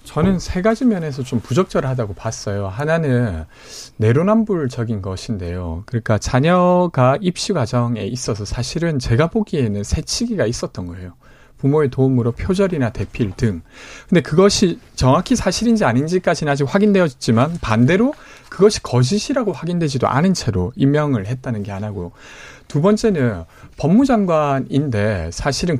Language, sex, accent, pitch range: Korean, male, native, 115-195 Hz